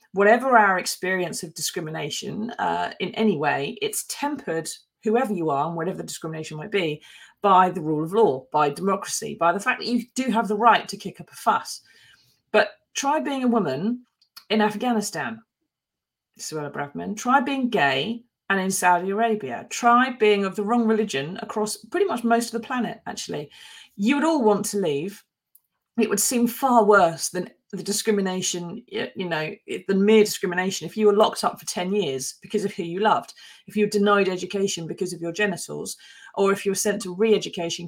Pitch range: 185-230 Hz